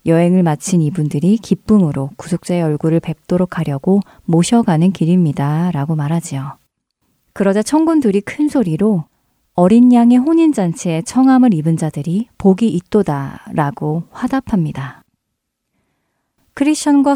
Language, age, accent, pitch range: Korean, 30-49, native, 165-235 Hz